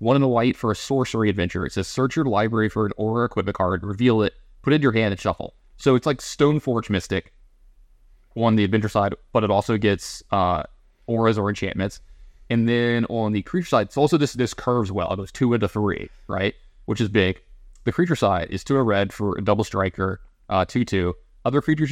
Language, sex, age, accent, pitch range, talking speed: English, male, 20-39, American, 100-125 Hz, 225 wpm